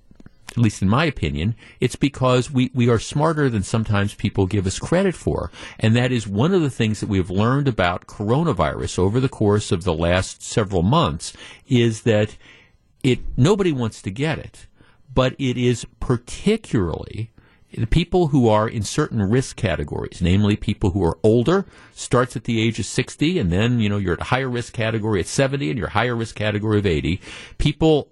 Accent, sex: American, male